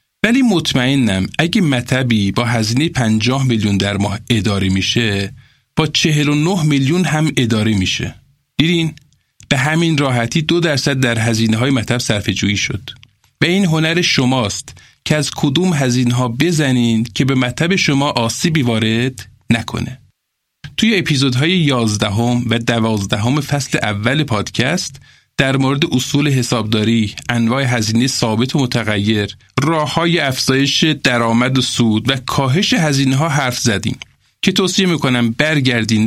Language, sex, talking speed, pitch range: Persian, male, 140 wpm, 115-155 Hz